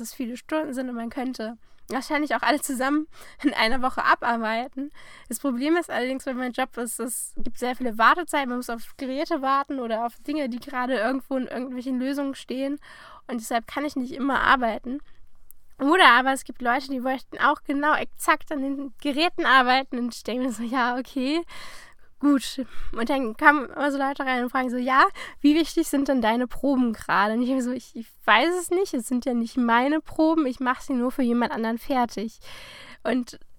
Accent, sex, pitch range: German, female, 245-300 Hz